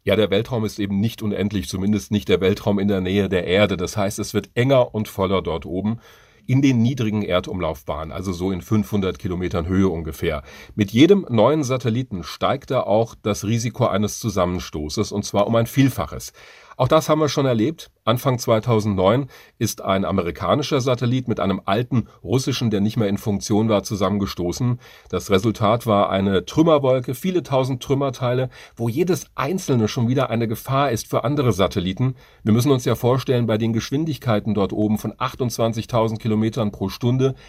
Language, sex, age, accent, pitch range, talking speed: German, male, 40-59, German, 100-120 Hz, 175 wpm